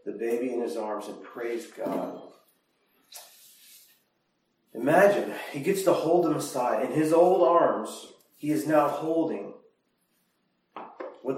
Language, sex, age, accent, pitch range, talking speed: English, male, 40-59, American, 130-175 Hz, 125 wpm